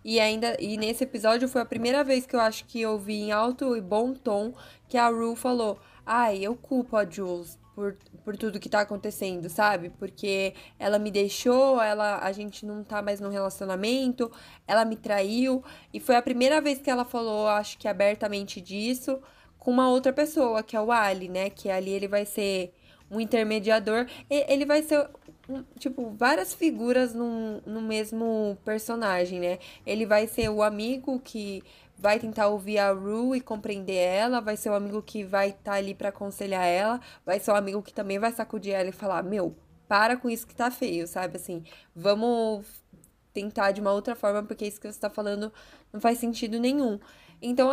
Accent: Brazilian